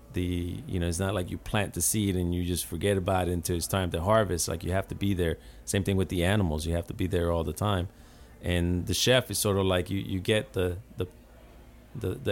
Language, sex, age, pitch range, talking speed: English, male, 40-59, 90-110 Hz, 260 wpm